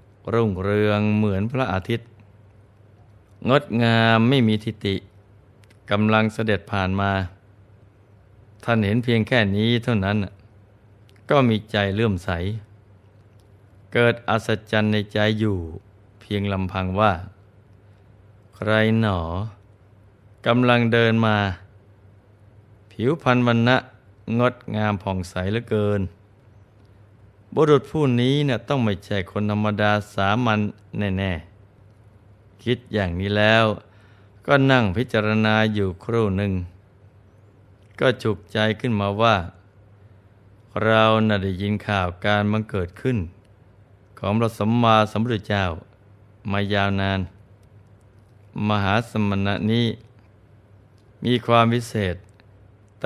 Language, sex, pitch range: Thai, male, 100-110 Hz